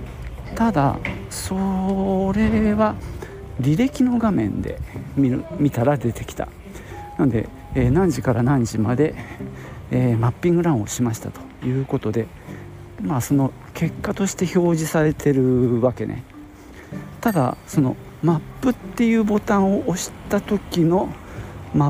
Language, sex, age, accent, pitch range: Japanese, male, 50-69, native, 110-160 Hz